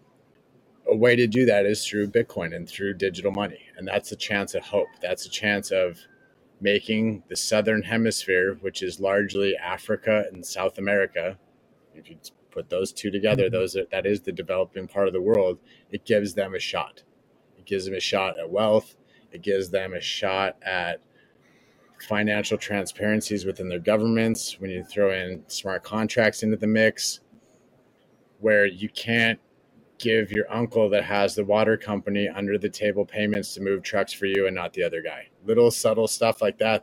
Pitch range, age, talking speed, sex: 100-110 Hz, 30-49, 180 wpm, male